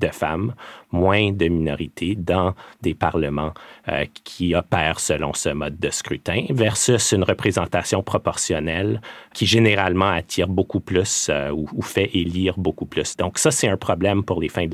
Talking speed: 165 wpm